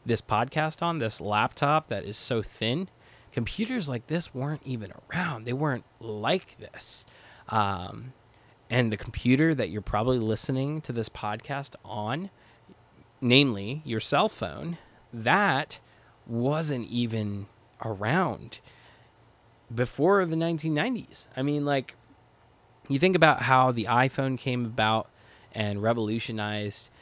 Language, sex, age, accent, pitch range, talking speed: English, male, 20-39, American, 110-130 Hz, 120 wpm